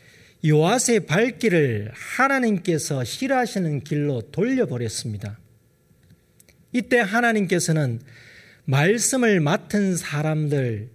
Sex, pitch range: male, 125-205 Hz